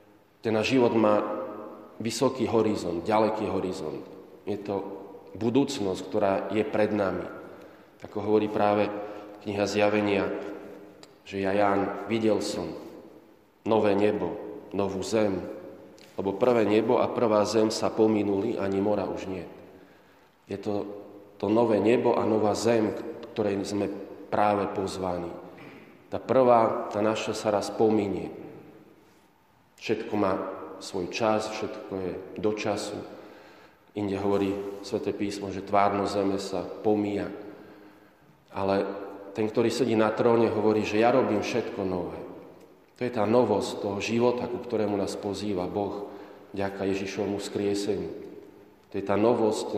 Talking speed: 130 wpm